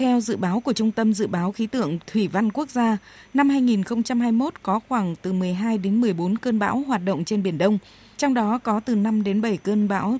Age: 20-39